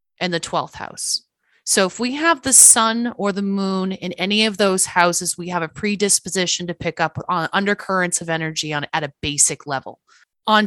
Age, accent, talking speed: 30-49, American, 195 wpm